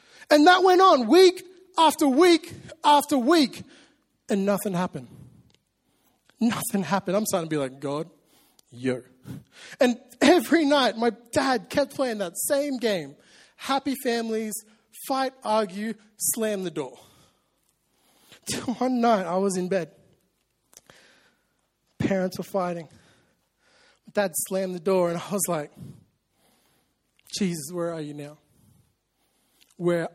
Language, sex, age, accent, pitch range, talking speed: English, male, 20-39, American, 155-235 Hz, 120 wpm